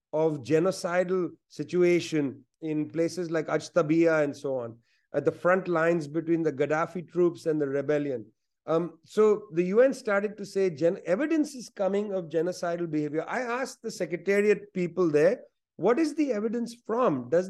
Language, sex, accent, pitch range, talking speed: English, male, Indian, 165-225 Hz, 160 wpm